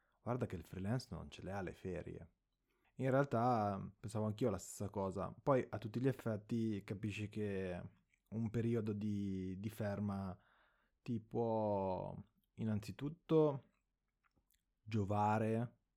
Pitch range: 95-115 Hz